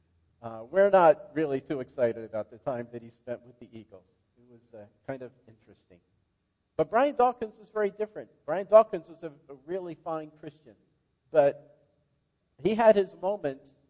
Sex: male